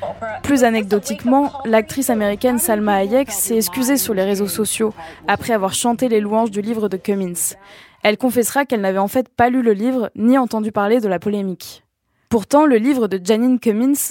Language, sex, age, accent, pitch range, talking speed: French, female, 20-39, French, 205-250 Hz, 185 wpm